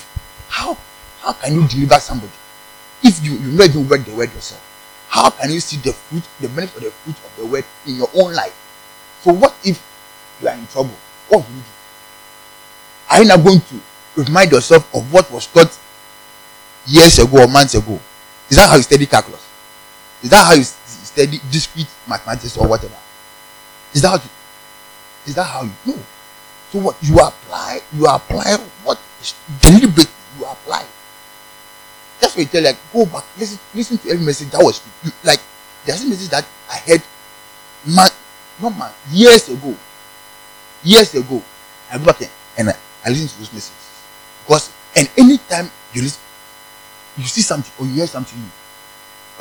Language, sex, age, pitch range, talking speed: English, male, 30-49, 140-150 Hz, 180 wpm